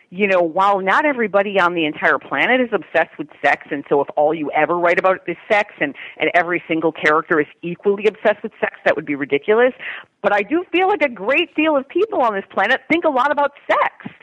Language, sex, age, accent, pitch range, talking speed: English, female, 40-59, American, 165-225 Hz, 235 wpm